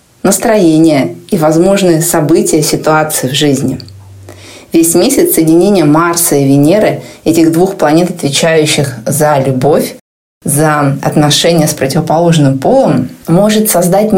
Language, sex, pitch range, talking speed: Russian, female, 150-185 Hz, 110 wpm